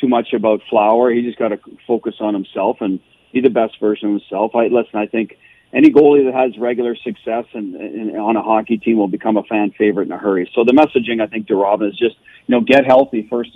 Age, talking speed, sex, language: 40-59, 250 wpm, male, English